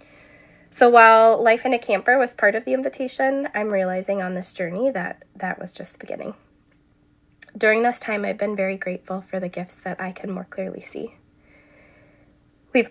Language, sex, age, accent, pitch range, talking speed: English, female, 20-39, American, 190-230 Hz, 180 wpm